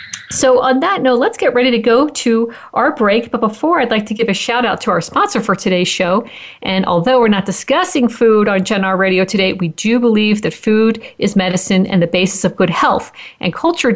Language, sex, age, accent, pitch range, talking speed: English, female, 50-69, American, 190-250 Hz, 230 wpm